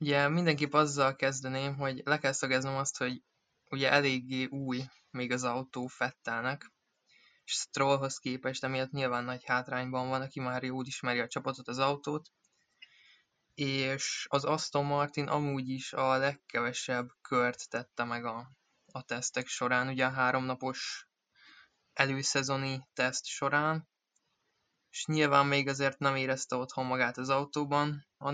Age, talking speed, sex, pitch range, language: 20-39, 140 wpm, male, 130-140 Hz, Hungarian